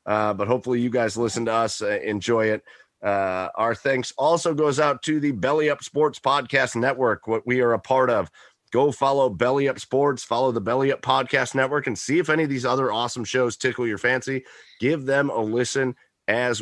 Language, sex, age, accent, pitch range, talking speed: English, male, 30-49, American, 115-145 Hz, 210 wpm